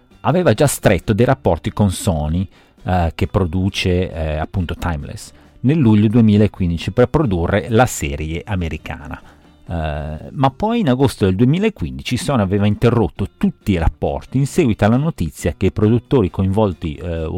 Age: 40-59